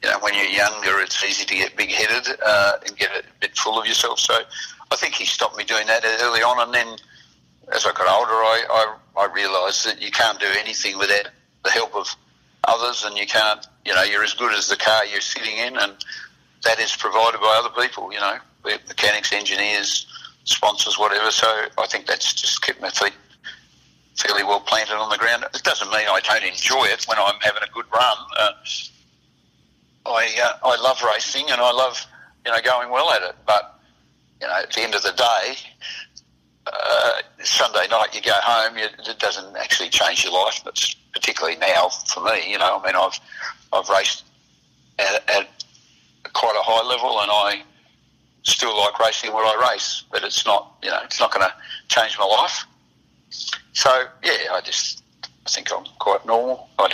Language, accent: English, Australian